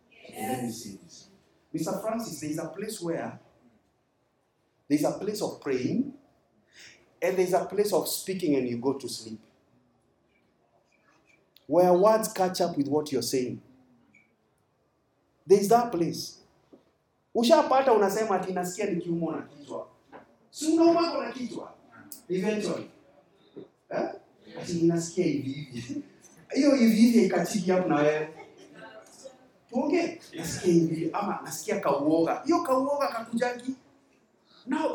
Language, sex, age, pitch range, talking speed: English, male, 50-69, 150-230 Hz, 75 wpm